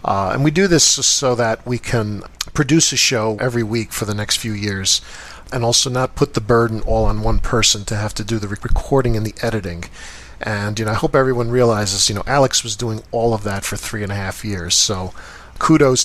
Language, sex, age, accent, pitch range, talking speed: English, male, 40-59, American, 105-120 Hz, 230 wpm